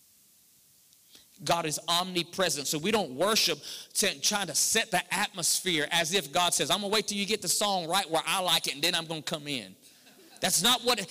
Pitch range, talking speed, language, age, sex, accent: 200-275 Hz, 215 wpm, English, 40-59, male, American